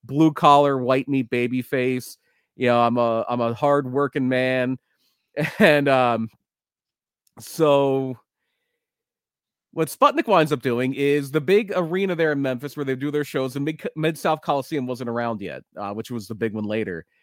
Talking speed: 175 wpm